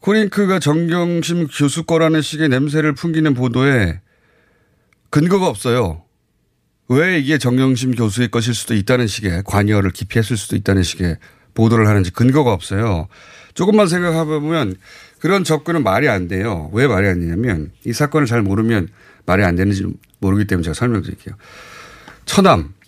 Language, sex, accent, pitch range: Korean, male, native, 100-155 Hz